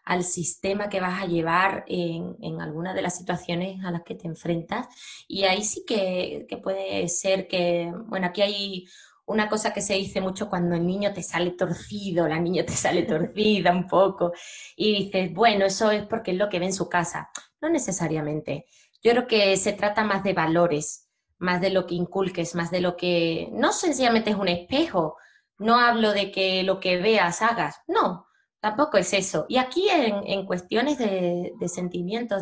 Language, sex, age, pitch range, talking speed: Spanish, female, 20-39, 175-210 Hz, 195 wpm